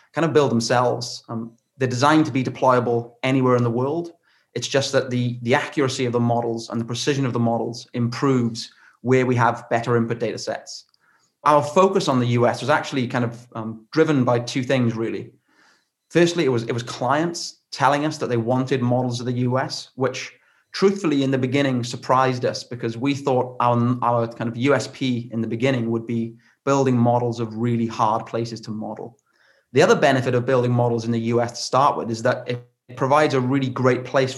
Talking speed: 200 wpm